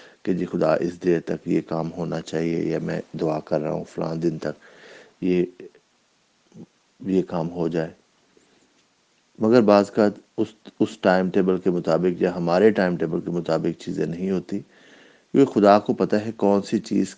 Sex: male